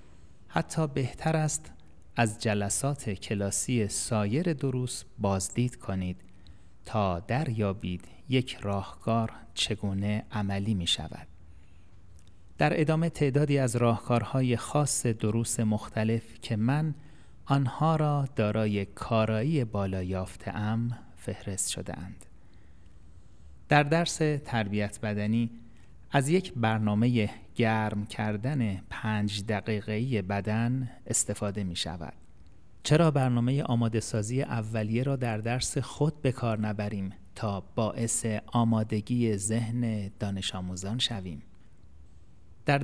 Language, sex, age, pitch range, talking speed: Persian, male, 30-49, 95-125 Hz, 100 wpm